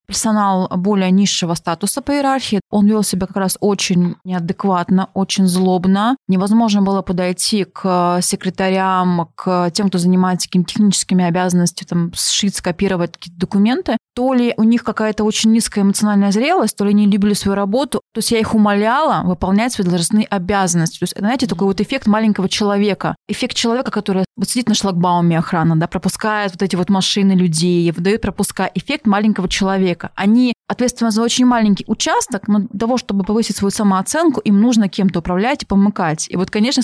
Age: 20-39